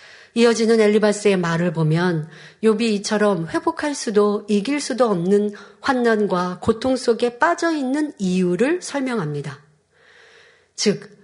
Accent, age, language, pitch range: native, 40-59, Korean, 185-265 Hz